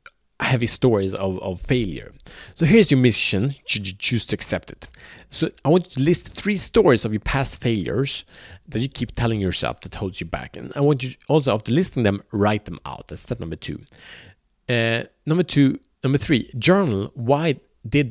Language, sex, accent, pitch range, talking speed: Swedish, male, Norwegian, 95-130 Hz, 190 wpm